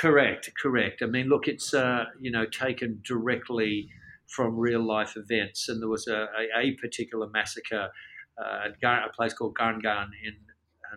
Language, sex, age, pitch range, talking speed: English, male, 50-69, 105-120 Hz, 165 wpm